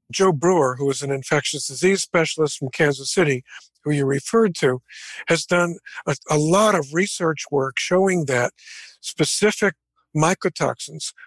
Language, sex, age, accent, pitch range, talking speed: English, male, 50-69, American, 140-180 Hz, 145 wpm